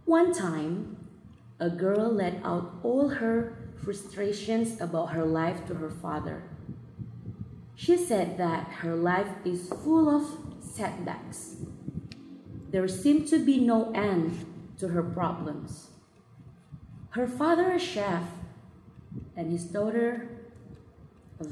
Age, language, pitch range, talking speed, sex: 30-49, Indonesian, 165-235 Hz, 115 wpm, female